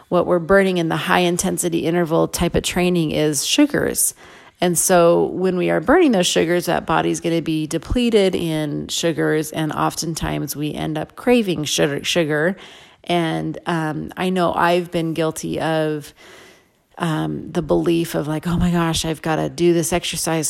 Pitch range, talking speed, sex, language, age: 155-180 Hz, 170 wpm, female, English, 30-49